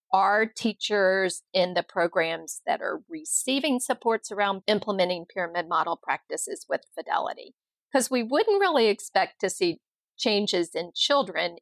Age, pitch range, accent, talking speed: 40-59, 175-220 Hz, American, 135 wpm